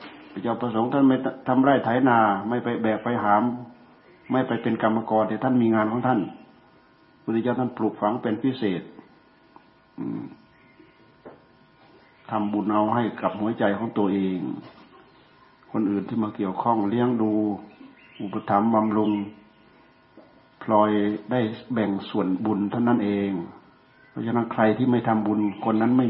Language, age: Thai, 60-79